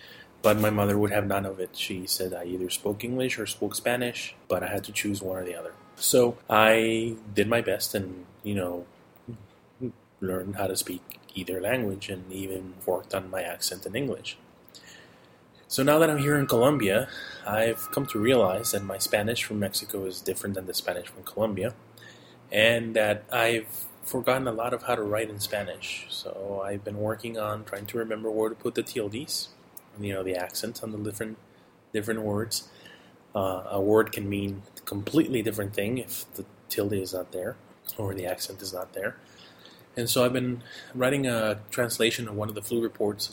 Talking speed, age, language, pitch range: 195 wpm, 20-39, English, 95-115 Hz